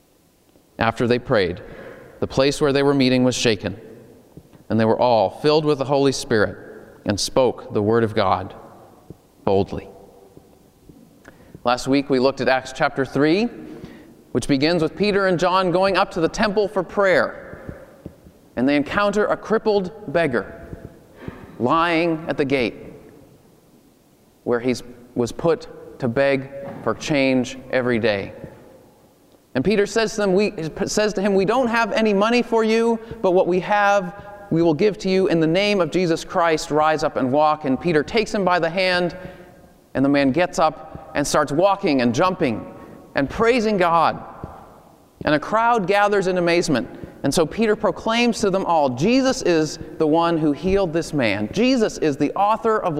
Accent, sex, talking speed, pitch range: American, male, 165 wpm, 140-200 Hz